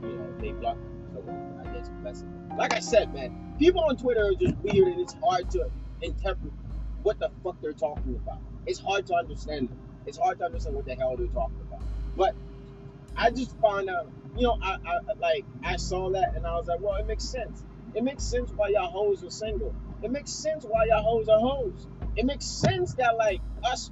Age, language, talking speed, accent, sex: 30-49, English, 210 wpm, American, male